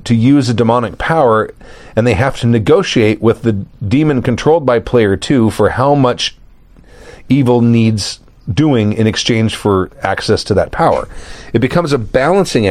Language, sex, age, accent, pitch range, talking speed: English, male, 40-59, American, 105-135 Hz, 160 wpm